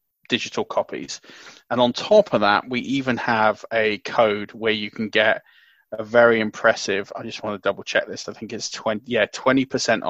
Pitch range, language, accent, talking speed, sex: 110-125 Hz, English, British, 185 wpm, male